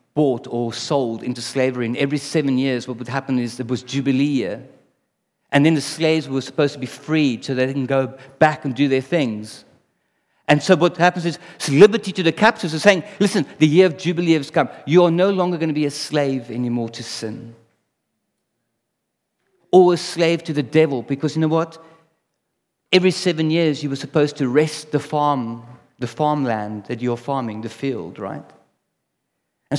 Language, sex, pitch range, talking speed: English, male, 125-170 Hz, 190 wpm